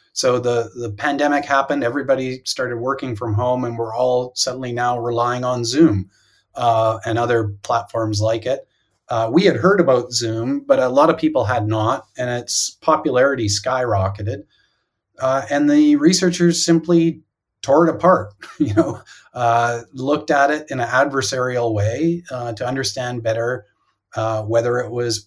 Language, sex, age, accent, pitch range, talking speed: English, male, 30-49, American, 110-135 Hz, 160 wpm